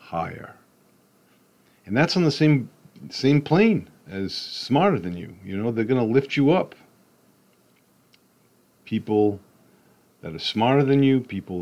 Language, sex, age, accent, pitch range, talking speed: English, male, 40-59, American, 90-120 Hz, 135 wpm